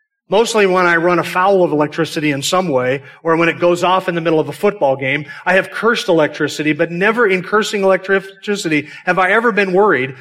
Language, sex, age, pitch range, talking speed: English, male, 40-59, 150-195 Hz, 210 wpm